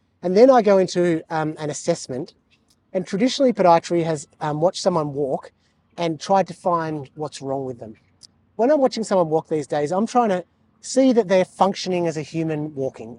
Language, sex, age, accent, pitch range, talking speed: English, male, 30-49, Australian, 145-185 Hz, 190 wpm